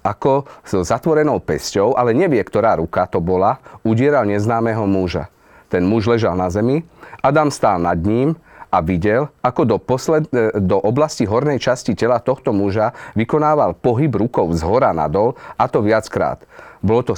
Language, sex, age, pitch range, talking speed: Slovak, male, 40-59, 95-125 Hz, 155 wpm